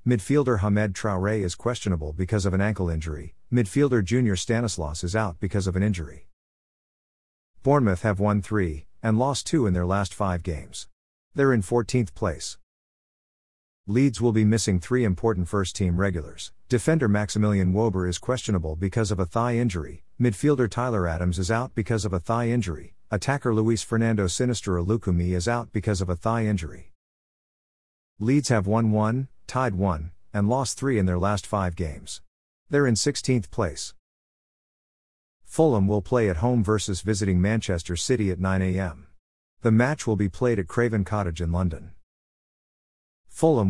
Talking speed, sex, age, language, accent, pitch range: 160 wpm, male, 50-69, English, American, 90-115 Hz